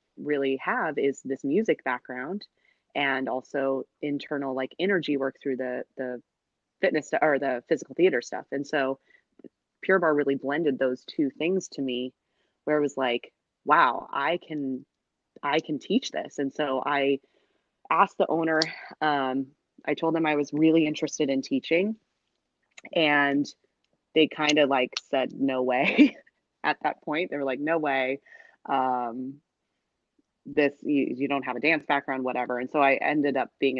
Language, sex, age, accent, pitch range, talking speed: English, female, 20-39, American, 130-150 Hz, 160 wpm